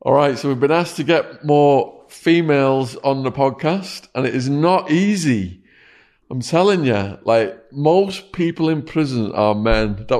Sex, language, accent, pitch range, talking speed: male, English, British, 120-140 Hz, 165 wpm